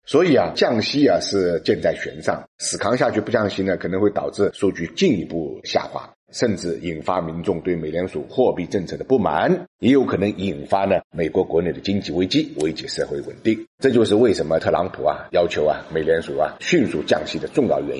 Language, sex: Chinese, male